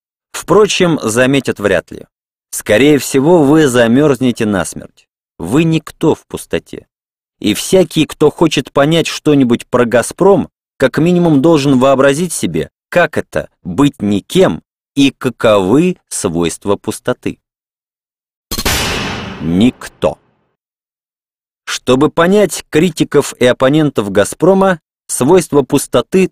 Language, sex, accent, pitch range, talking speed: Russian, male, native, 125-160 Hz, 100 wpm